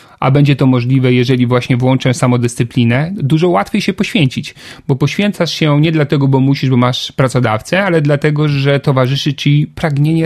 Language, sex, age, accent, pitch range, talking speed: Polish, male, 40-59, native, 125-150 Hz, 165 wpm